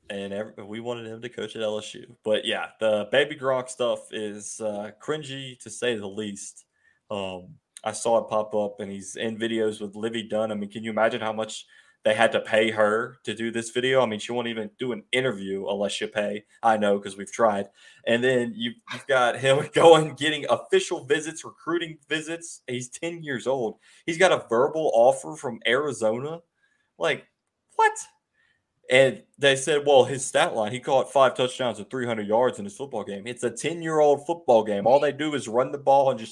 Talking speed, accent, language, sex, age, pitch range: 205 wpm, American, English, male, 20-39, 110-145 Hz